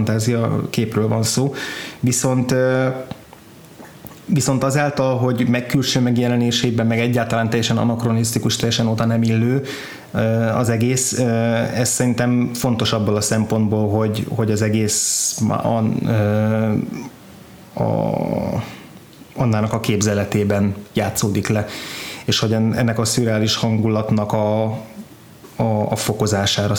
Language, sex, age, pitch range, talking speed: Hungarian, male, 20-39, 110-120 Hz, 110 wpm